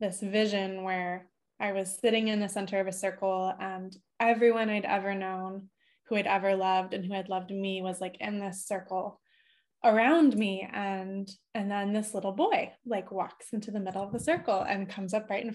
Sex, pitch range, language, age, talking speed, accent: female, 190-230 Hz, English, 20-39, 200 wpm, American